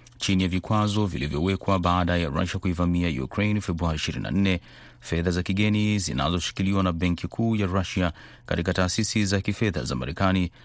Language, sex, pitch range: Swahili, male, 90-105 Hz